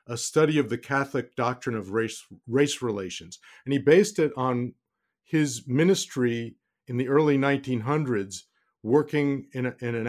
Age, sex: 50-69, male